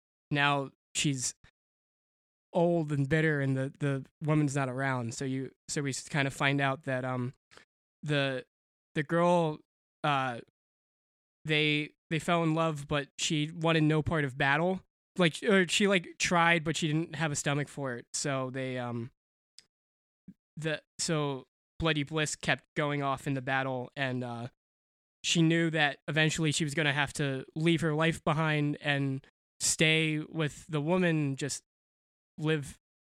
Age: 20-39